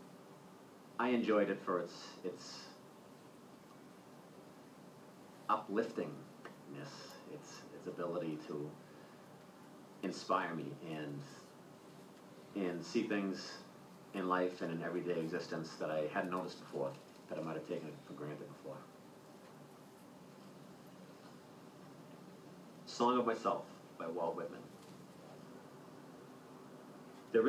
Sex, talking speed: male, 95 wpm